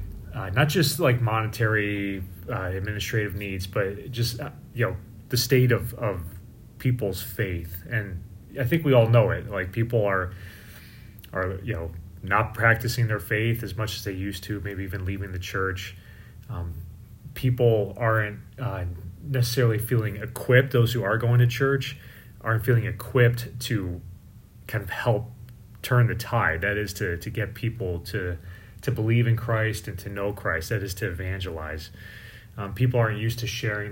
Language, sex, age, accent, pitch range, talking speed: English, male, 30-49, American, 100-120 Hz, 165 wpm